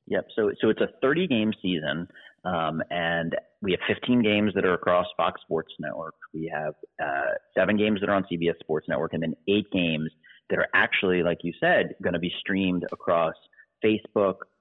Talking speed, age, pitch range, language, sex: 195 wpm, 30-49, 85-100 Hz, English, male